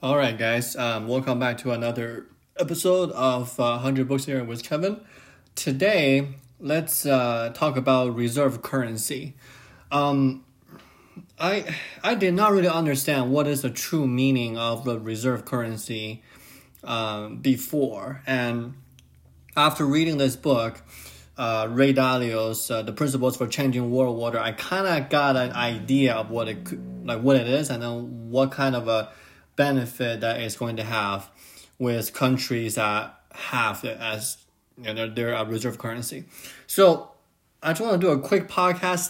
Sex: male